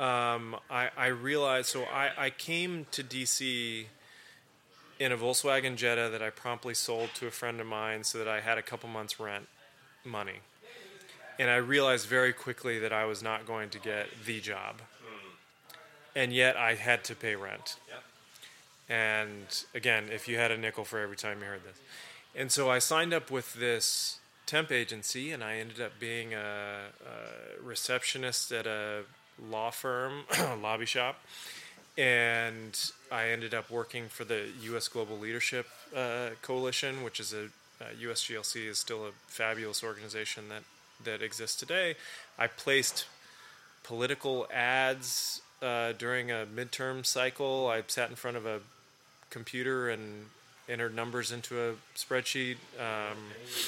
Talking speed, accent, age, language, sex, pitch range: 155 wpm, American, 20-39, English, male, 110-130 Hz